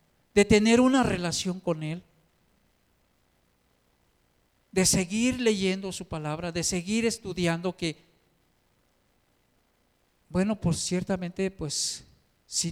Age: 50-69